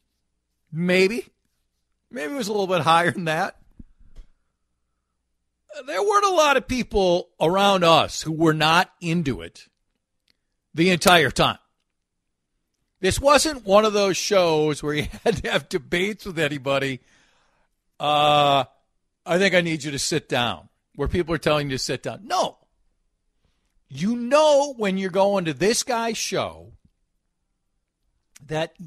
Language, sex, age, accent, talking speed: English, male, 50-69, American, 140 wpm